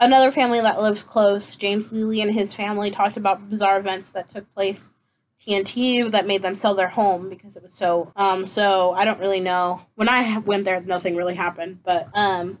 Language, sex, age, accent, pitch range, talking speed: English, female, 20-39, American, 195-240 Hz, 205 wpm